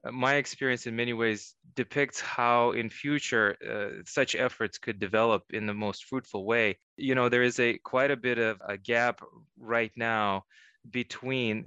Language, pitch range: English, 105-125 Hz